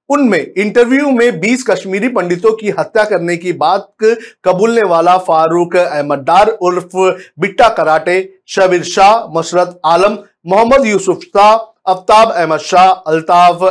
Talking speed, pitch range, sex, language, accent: 115 wpm, 160-210 Hz, male, Hindi, native